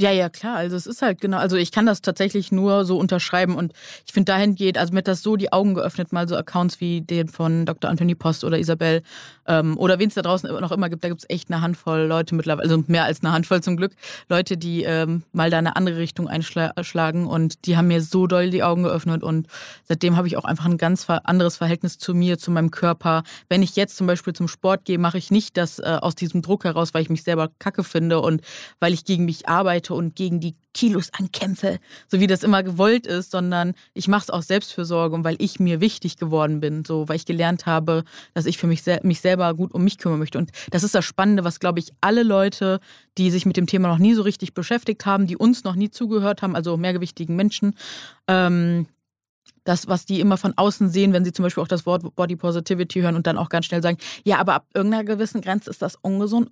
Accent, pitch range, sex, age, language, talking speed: German, 170-190 Hz, female, 20-39, German, 245 wpm